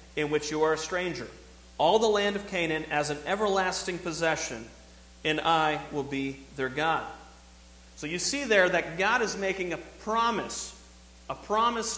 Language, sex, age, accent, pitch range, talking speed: English, male, 40-59, American, 140-200 Hz, 165 wpm